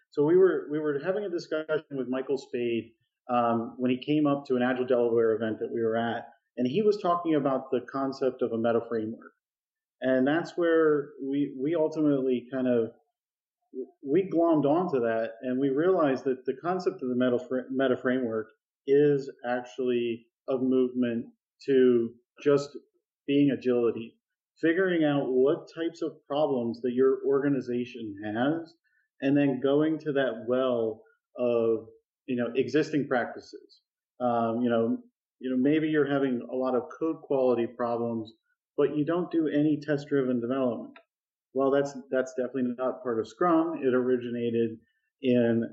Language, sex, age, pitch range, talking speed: English, male, 40-59, 125-155 Hz, 155 wpm